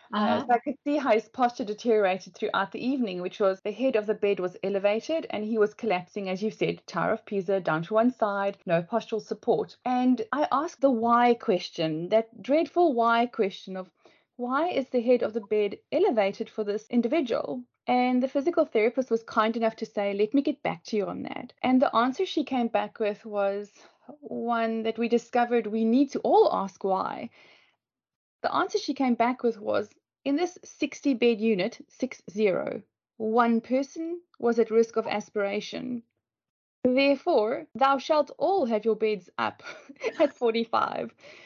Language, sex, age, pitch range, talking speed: English, female, 30-49, 215-260 Hz, 180 wpm